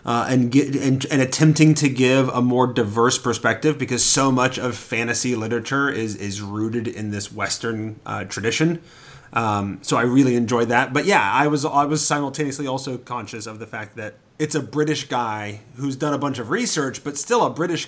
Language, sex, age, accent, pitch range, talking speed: English, male, 30-49, American, 115-145 Hz, 200 wpm